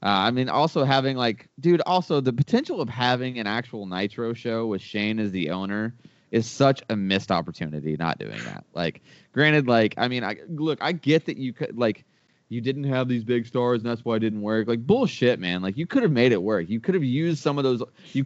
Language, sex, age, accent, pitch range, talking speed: English, male, 20-39, American, 105-135 Hz, 235 wpm